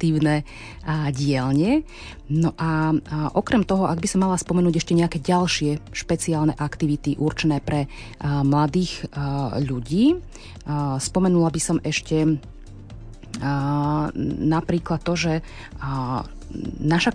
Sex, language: female, Slovak